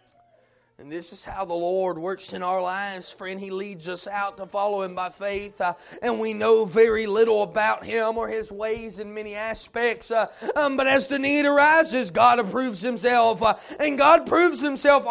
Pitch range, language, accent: 205-290 Hz, English, American